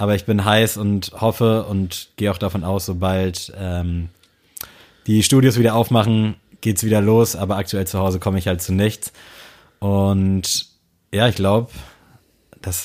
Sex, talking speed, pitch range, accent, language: male, 165 wpm, 95-115 Hz, German, German